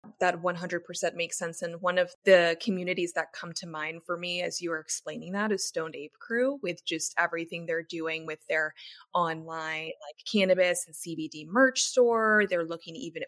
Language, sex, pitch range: English, female, 165-210 Hz